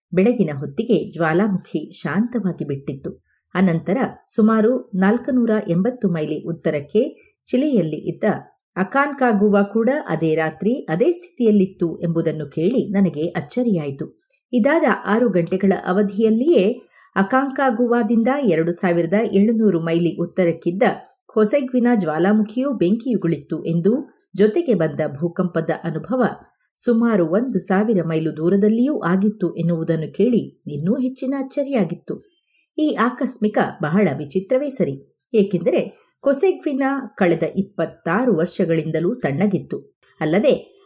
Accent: native